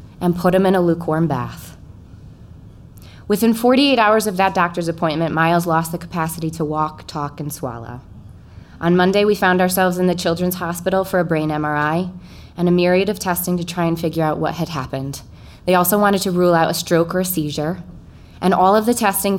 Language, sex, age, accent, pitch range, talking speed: English, female, 20-39, American, 155-190 Hz, 200 wpm